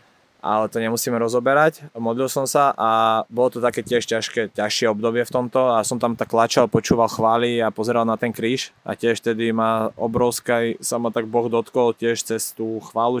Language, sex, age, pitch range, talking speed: Slovak, male, 20-39, 110-120 Hz, 195 wpm